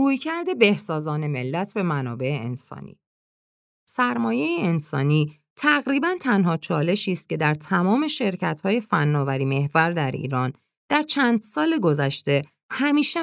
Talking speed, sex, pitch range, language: 115 wpm, female, 145-230 Hz, Persian